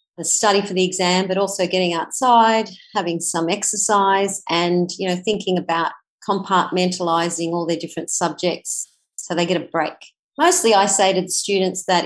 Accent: Australian